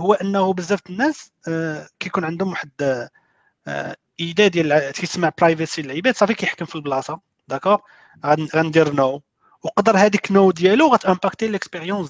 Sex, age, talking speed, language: male, 40-59, 145 wpm, Arabic